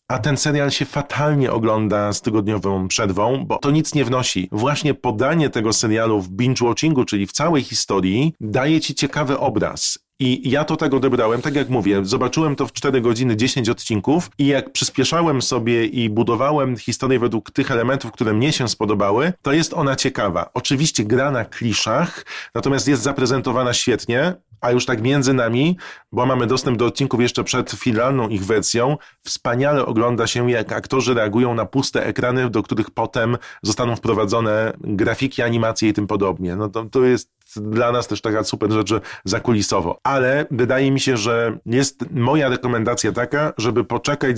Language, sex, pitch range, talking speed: Polish, male, 110-135 Hz, 170 wpm